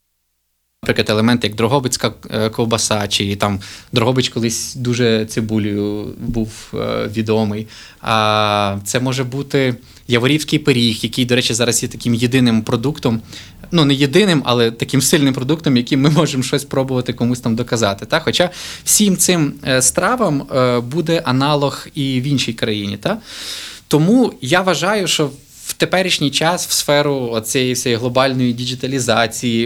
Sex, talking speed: male, 130 wpm